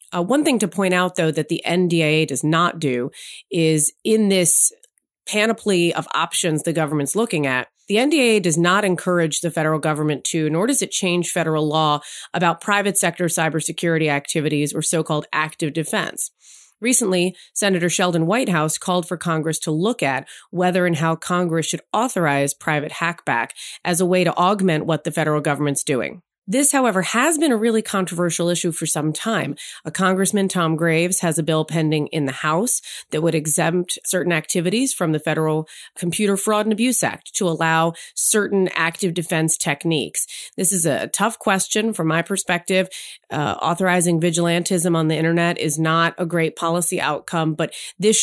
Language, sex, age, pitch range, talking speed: English, female, 30-49, 155-190 Hz, 170 wpm